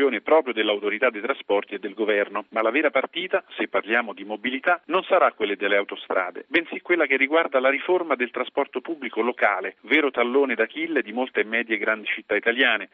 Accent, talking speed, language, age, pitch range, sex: native, 185 wpm, Italian, 50-69, 110-150 Hz, male